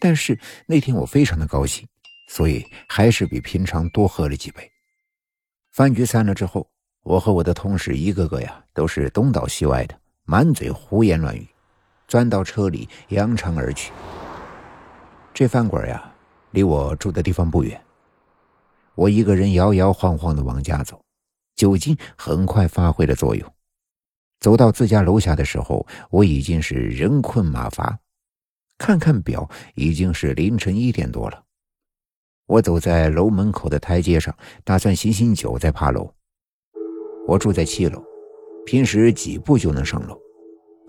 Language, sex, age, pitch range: Chinese, male, 60-79, 85-125 Hz